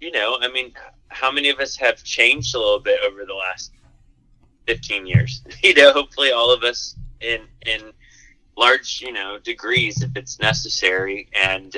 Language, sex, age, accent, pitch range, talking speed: English, male, 30-49, American, 95-125 Hz, 175 wpm